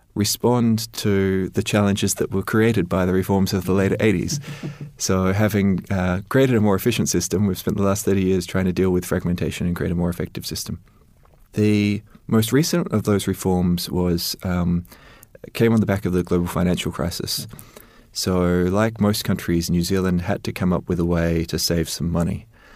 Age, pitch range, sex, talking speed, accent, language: 20-39, 90-105 Hz, male, 190 wpm, Australian, English